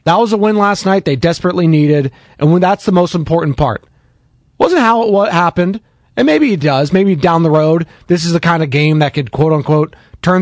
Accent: American